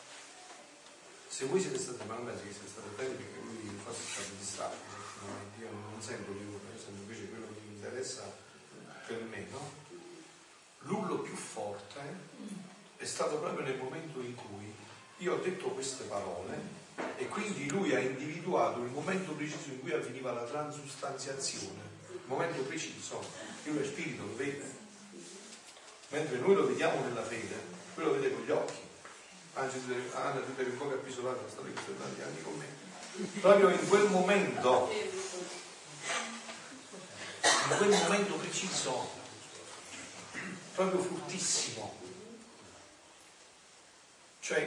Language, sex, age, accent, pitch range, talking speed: Italian, male, 40-59, native, 115-185 Hz, 140 wpm